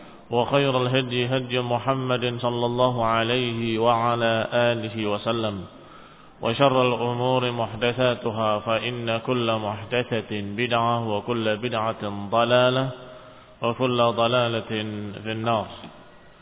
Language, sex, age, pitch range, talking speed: Indonesian, male, 20-39, 120-140 Hz, 90 wpm